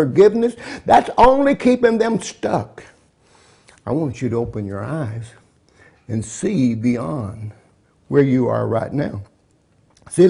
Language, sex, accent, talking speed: English, male, American, 130 wpm